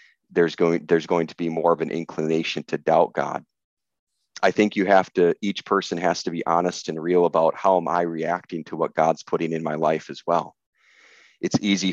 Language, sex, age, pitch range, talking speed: English, male, 30-49, 80-90 Hz, 210 wpm